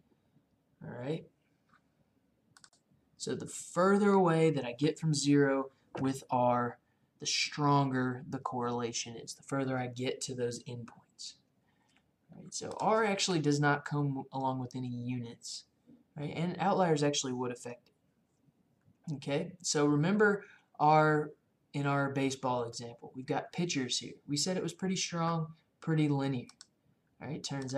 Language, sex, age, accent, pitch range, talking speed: English, male, 20-39, American, 125-155 Hz, 145 wpm